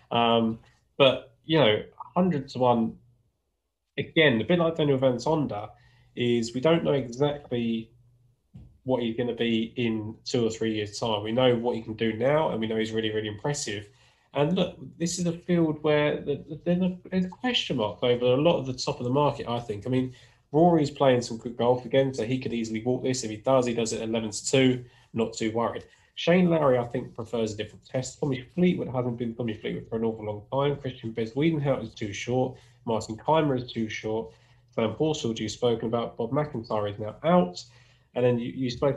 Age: 20-39